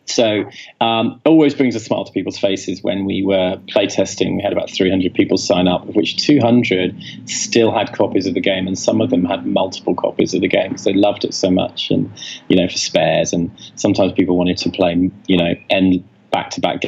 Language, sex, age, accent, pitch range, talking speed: English, male, 30-49, British, 95-115 Hz, 220 wpm